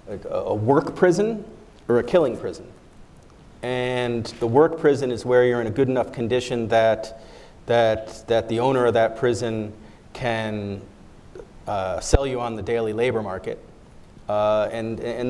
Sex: male